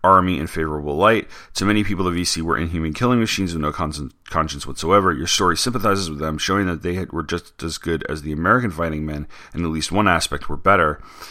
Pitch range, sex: 80-105 Hz, male